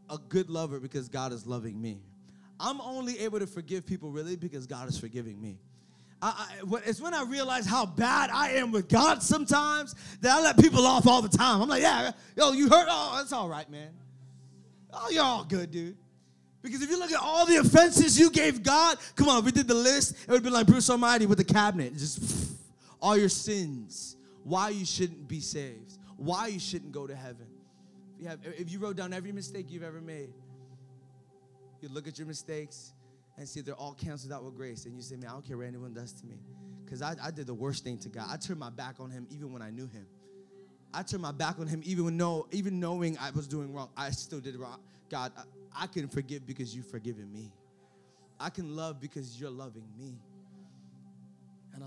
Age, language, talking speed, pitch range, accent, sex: 20-39, English, 220 wpm, 125-195 Hz, American, male